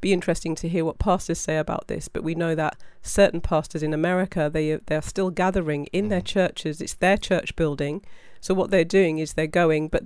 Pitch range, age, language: 165-190 Hz, 40-59, English